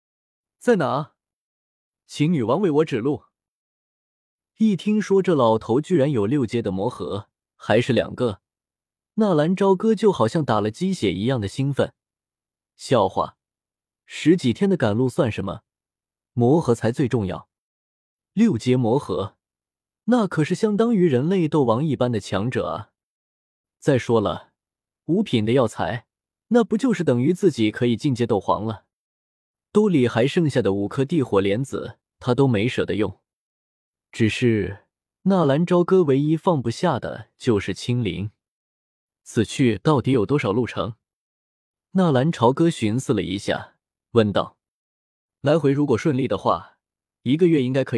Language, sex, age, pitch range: Chinese, male, 20-39, 110-165 Hz